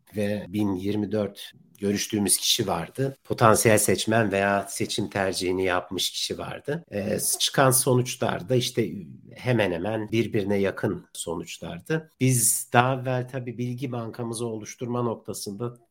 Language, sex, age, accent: Turkish, male, 60-79, native